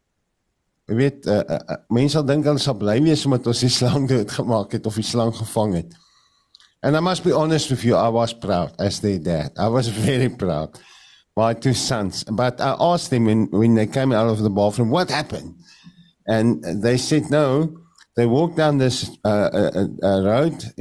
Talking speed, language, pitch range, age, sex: 135 wpm, English, 110-150 Hz, 50-69, male